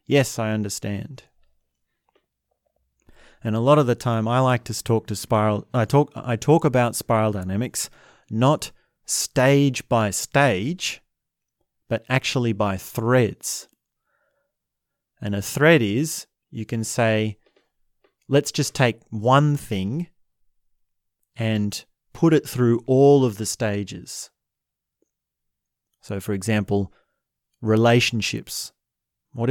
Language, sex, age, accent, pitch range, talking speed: English, male, 30-49, Australian, 105-125 Hz, 110 wpm